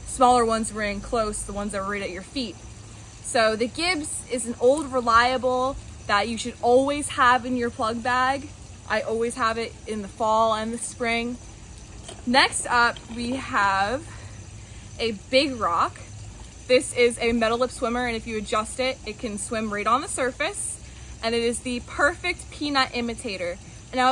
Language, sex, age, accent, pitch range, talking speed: English, female, 20-39, American, 215-260 Hz, 175 wpm